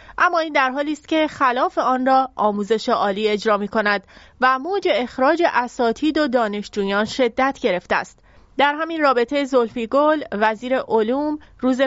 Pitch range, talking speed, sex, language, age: 225-285 Hz, 145 wpm, female, English, 30-49